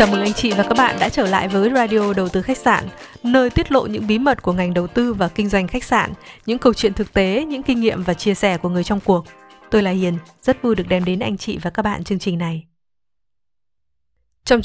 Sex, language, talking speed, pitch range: female, Vietnamese, 260 wpm, 180-255 Hz